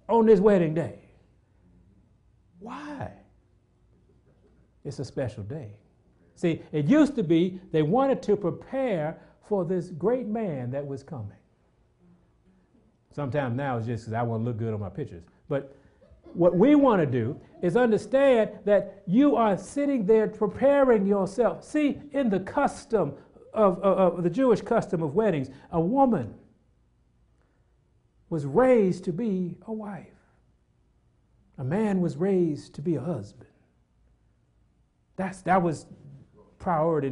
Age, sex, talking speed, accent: 60-79, male, 135 wpm, American